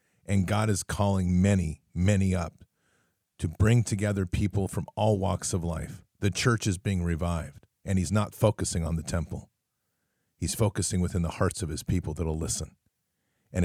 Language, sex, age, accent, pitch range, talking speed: English, male, 40-59, American, 85-105 Hz, 175 wpm